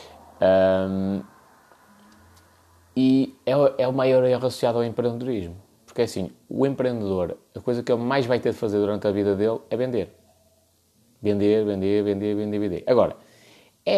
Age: 20-39